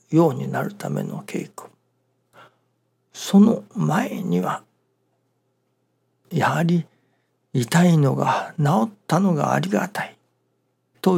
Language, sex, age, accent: Japanese, male, 60-79, native